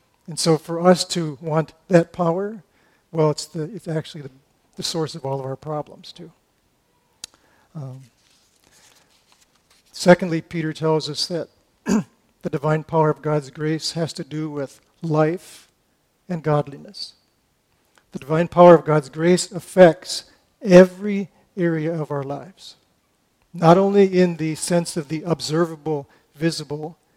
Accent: American